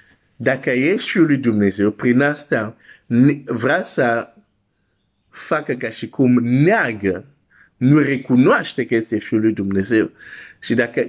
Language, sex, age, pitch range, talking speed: Romanian, male, 50-69, 95-125 Hz, 125 wpm